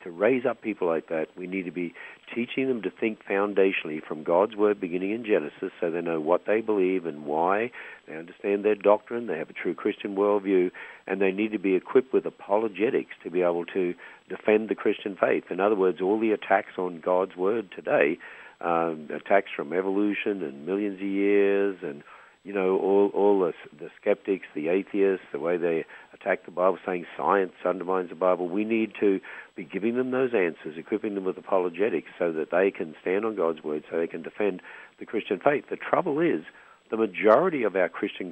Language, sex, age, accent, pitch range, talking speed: English, male, 50-69, Australian, 90-105 Hz, 200 wpm